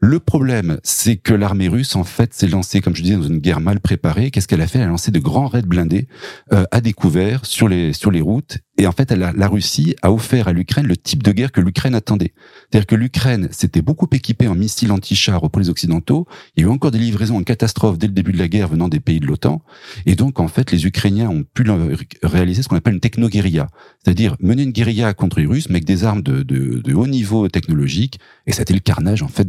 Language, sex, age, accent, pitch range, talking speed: French, male, 40-59, French, 90-115 Hz, 260 wpm